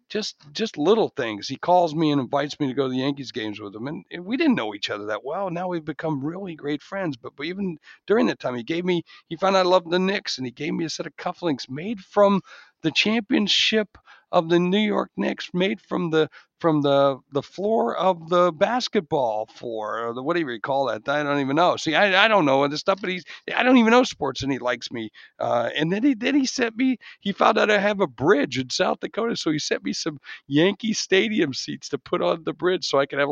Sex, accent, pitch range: male, American, 120-180 Hz